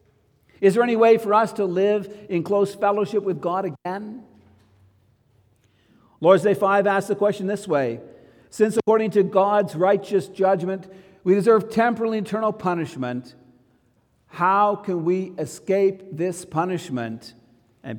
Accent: American